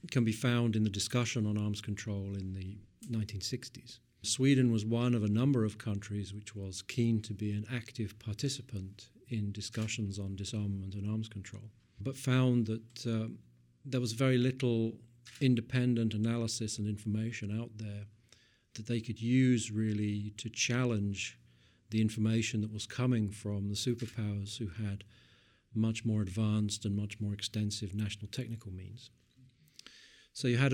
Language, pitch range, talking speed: English, 105-120 Hz, 155 wpm